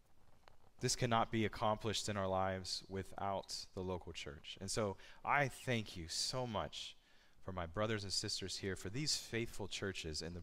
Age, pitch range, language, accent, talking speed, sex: 30-49, 90-110 Hz, English, American, 175 wpm, male